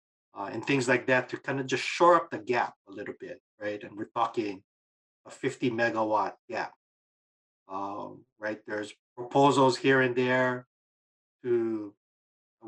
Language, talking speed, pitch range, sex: English, 155 wpm, 110-135 Hz, male